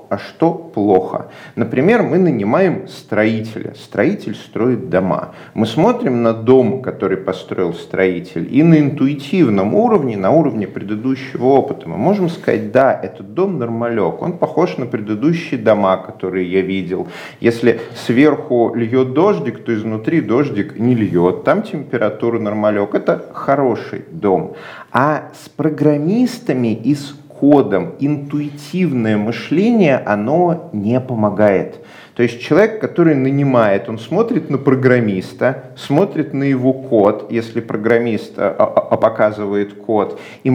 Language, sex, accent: Russian, male, native